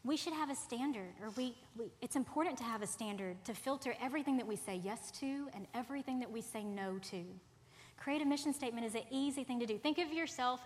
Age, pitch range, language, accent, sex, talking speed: 30-49, 195-255 Hz, English, American, female, 235 wpm